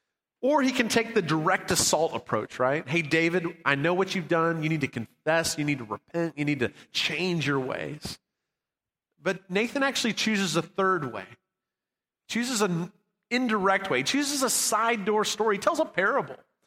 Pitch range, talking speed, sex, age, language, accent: 170-225 Hz, 175 wpm, male, 40-59, English, American